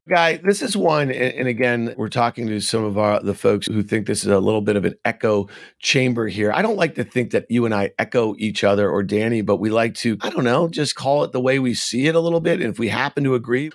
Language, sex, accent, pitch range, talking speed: English, male, American, 115-145 Hz, 275 wpm